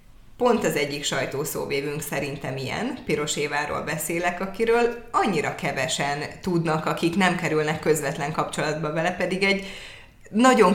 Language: Hungarian